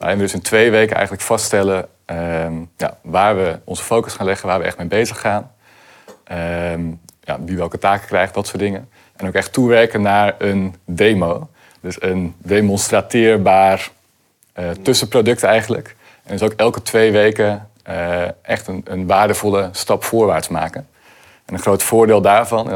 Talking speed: 165 wpm